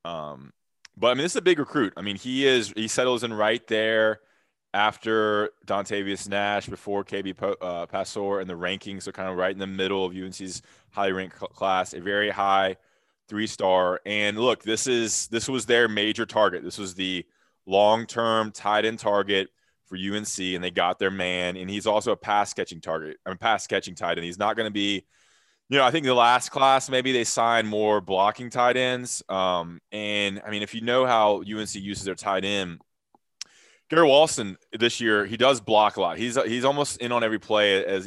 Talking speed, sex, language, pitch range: 200 wpm, male, English, 95-110 Hz